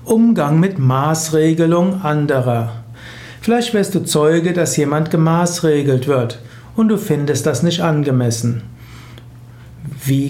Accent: German